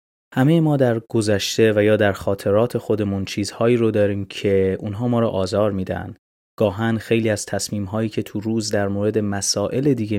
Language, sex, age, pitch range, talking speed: Persian, male, 30-49, 100-115 Hz, 170 wpm